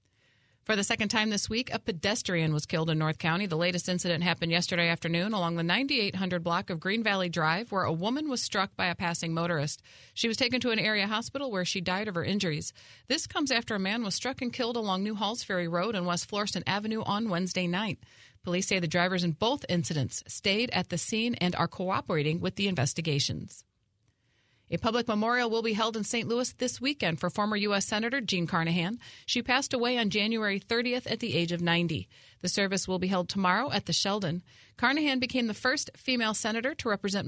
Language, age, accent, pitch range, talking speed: English, 40-59, American, 170-220 Hz, 215 wpm